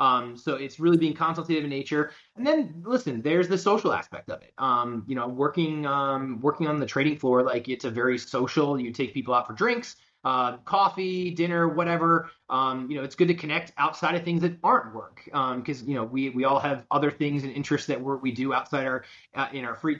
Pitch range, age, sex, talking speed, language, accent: 130-165 Hz, 20-39, male, 230 wpm, English, American